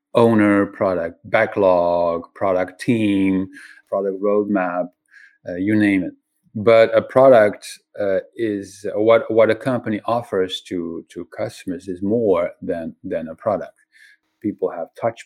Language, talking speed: English, 130 wpm